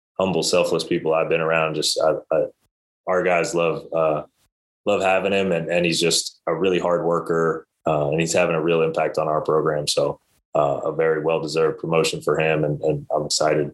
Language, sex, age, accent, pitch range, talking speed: English, male, 20-39, American, 80-90 Hz, 200 wpm